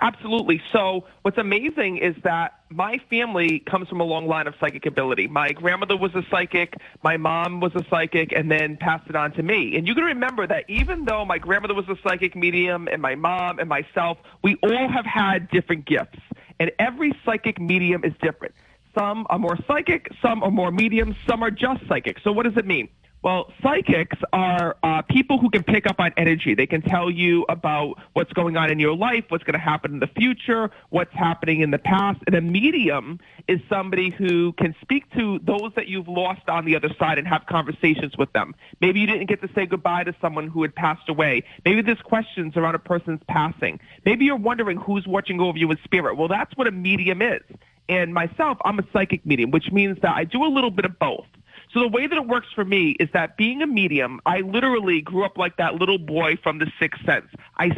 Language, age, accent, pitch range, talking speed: English, 40-59, American, 165-215 Hz, 220 wpm